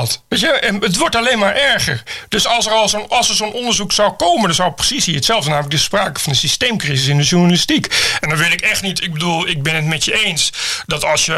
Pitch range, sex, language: 160-210 Hz, male, Dutch